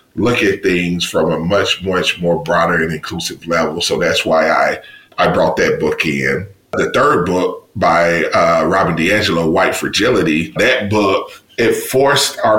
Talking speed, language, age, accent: 165 wpm, English, 30-49, American